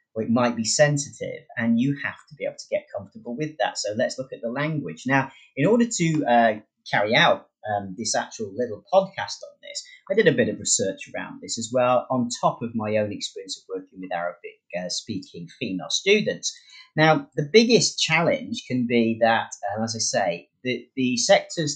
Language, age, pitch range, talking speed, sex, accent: English, 30-49, 115-190 Hz, 200 wpm, male, British